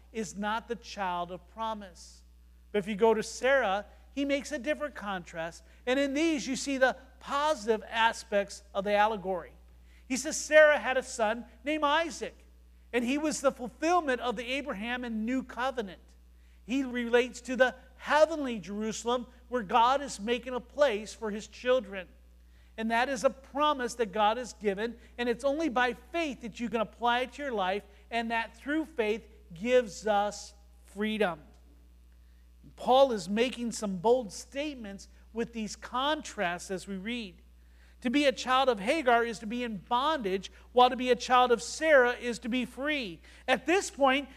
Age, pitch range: 50-69, 210-270 Hz